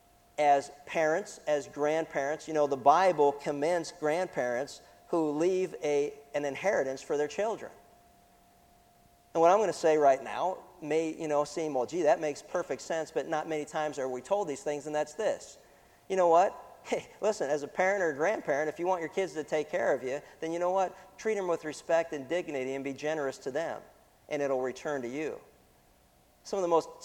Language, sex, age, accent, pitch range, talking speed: English, male, 50-69, American, 150-190 Hz, 205 wpm